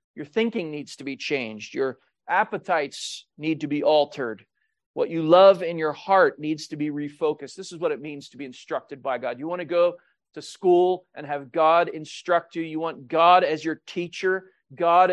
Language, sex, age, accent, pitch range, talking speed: English, male, 40-59, American, 145-175 Hz, 200 wpm